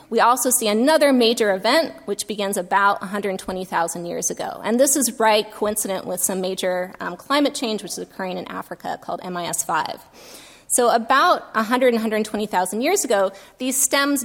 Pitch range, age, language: 195-245 Hz, 20-39, English